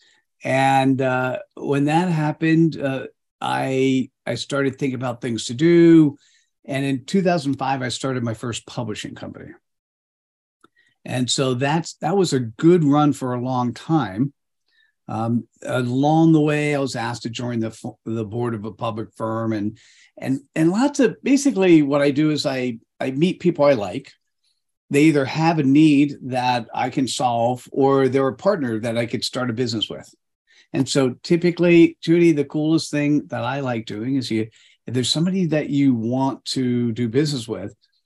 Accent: American